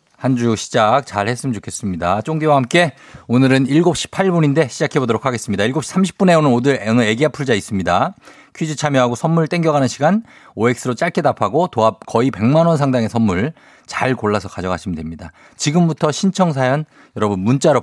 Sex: male